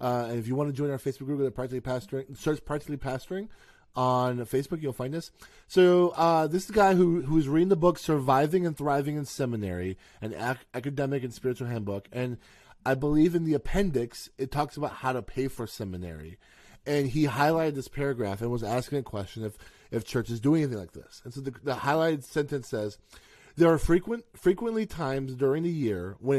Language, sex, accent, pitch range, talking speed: English, male, American, 125-155 Hz, 210 wpm